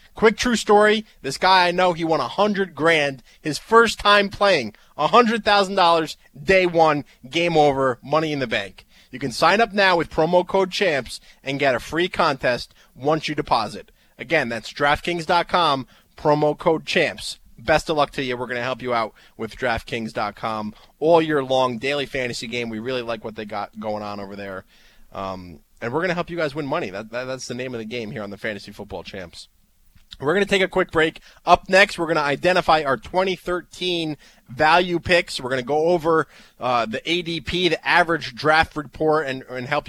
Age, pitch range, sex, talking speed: 20-39, 120-170 Hz, male, 200 wpm